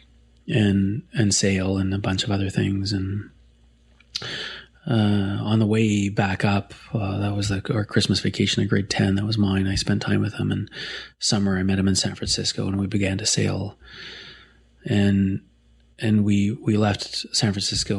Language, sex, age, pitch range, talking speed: English, male, 30-49, 95-105 Hz, 180 wpm